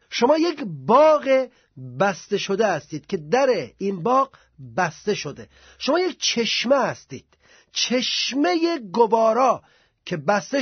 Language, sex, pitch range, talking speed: Persian, male, 190-260 Hz, 115 wpm